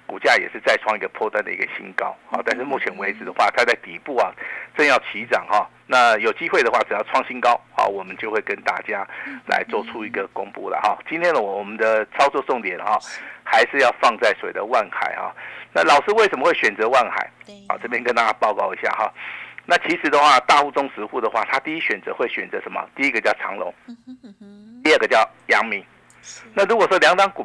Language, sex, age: Chinese, male, 50-69